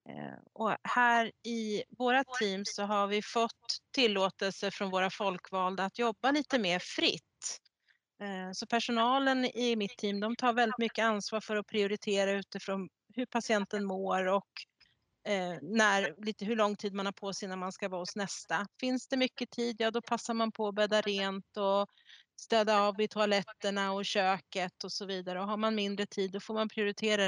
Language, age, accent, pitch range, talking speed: Swedish, 30-49, native, 195-230 Hz, 180 wpm